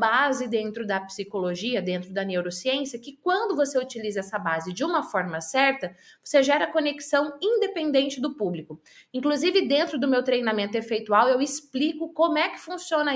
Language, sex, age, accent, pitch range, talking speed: Portuguese, female, 20-39, Brazilian, 215-295 Hz, 160 wpm